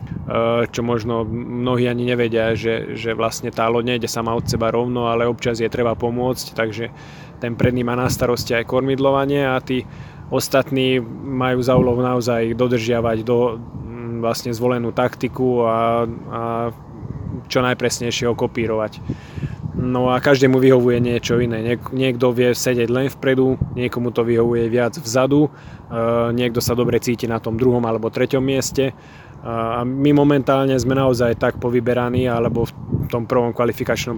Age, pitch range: 20-39, 115-130 Hz